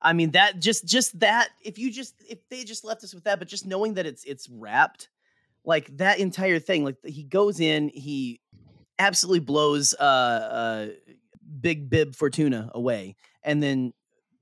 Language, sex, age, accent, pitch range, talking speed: English, male, 30-49, American, 135-200 Hz, 175 wpm